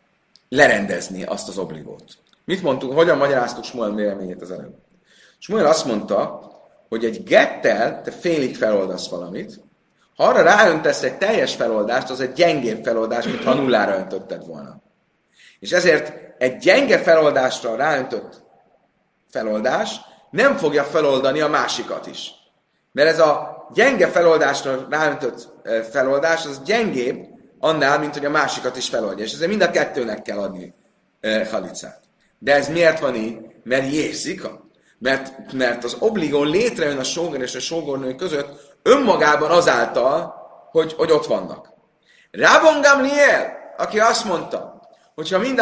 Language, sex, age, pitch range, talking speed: Hungarian, male, 30-49, 130-180 Hz, 140 wpm